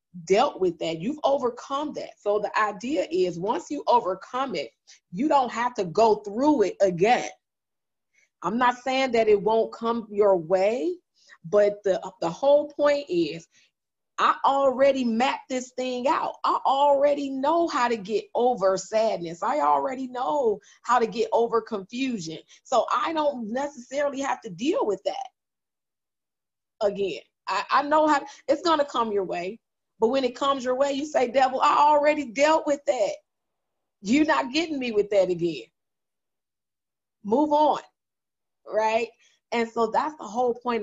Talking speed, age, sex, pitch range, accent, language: 160 wpm, 30-49, female, 200-275 Hz, American, English